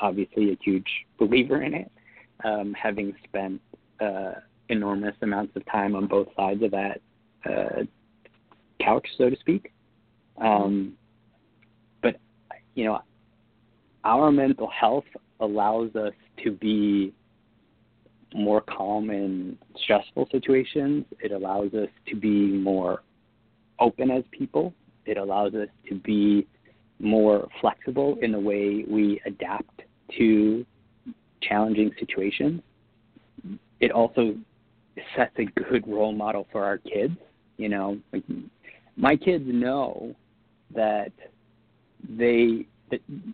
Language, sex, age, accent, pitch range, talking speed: English, male, 30-49, American, 105-115 Hz, 110 wpm